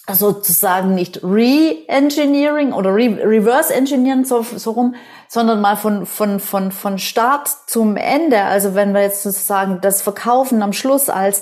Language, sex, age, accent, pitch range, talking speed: German, female, 30-49, German, 200-255 Hz, 150 wpm